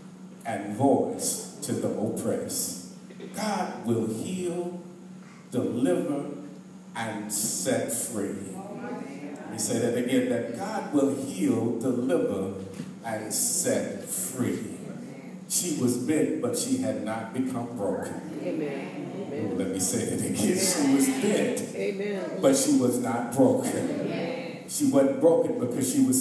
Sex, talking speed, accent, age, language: male, 120 wpm, American, 50-69, English